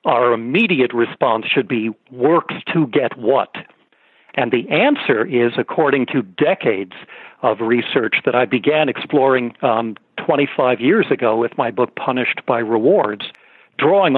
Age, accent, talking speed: 60-79, American, 140 wpm